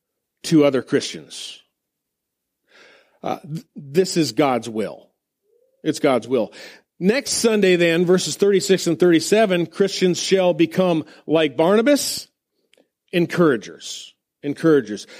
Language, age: English, 40-59